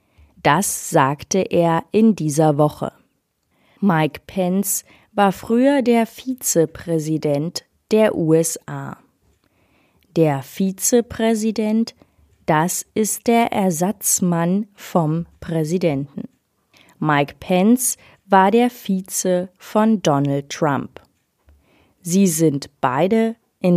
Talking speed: 85 wpm